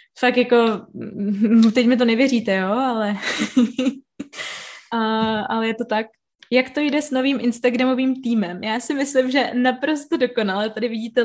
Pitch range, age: 220-250 Hz, 20-39